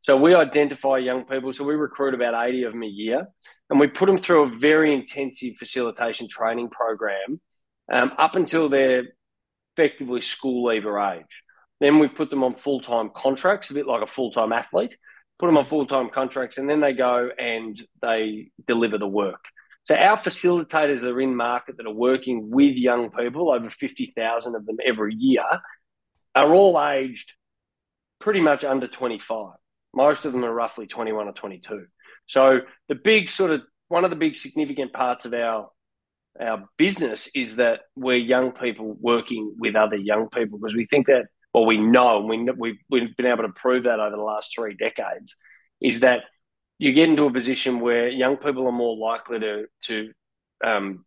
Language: English